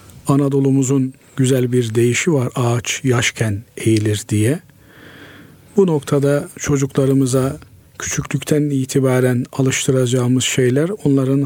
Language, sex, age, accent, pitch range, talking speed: Turkish, male, 50-69, native, 125-145 Hz, 90 wpm